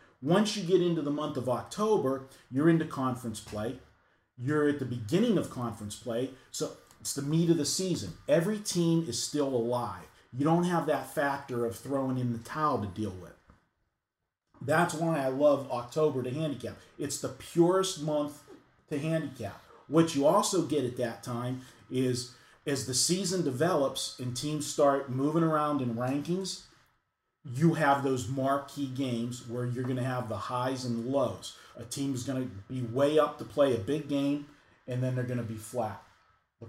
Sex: male